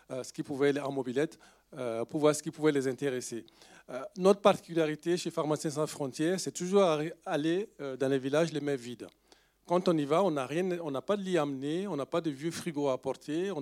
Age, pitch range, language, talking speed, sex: 40-59, 125-155 Hz, French, 225 wpm, male